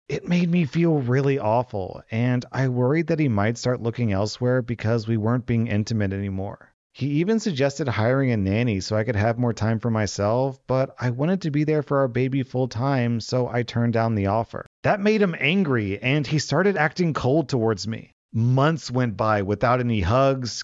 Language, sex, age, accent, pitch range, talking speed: English, male, 40-59, American, 115-140 Hz, 200 wpm